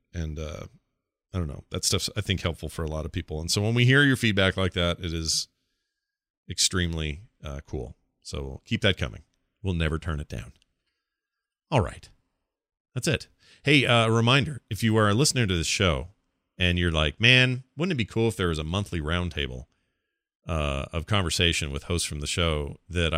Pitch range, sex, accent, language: 90-135 Hz, male, American, English